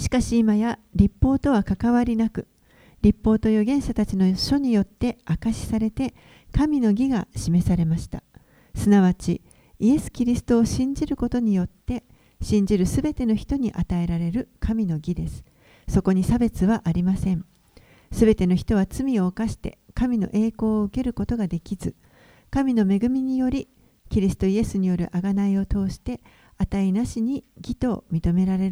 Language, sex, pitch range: Japanese, female, 185-235 Hz